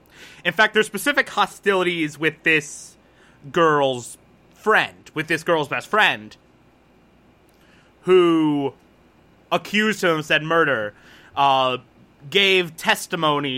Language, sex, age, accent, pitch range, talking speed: English, male, 20-39, American, 135-170 Hz, 100 wpm